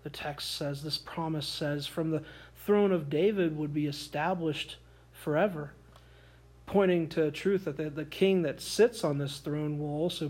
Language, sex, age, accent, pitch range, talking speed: English, male, 40-59, American, 130-155 Hz, 175 wpm